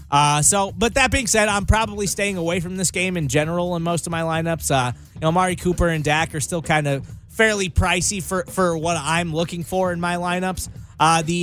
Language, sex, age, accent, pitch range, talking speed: English, male, 20-39, American, 135-180 Hz, 230 wpm